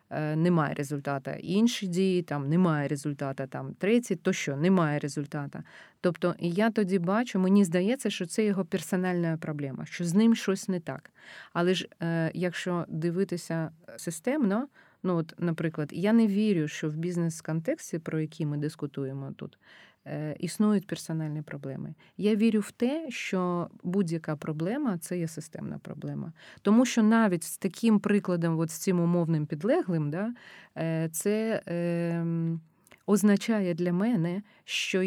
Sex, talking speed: female, 135 wpm